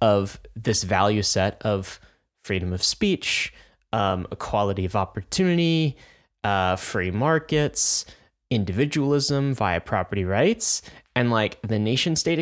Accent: American